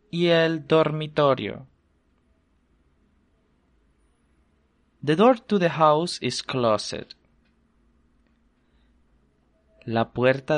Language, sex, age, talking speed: English, male, 20-39, 60 wpm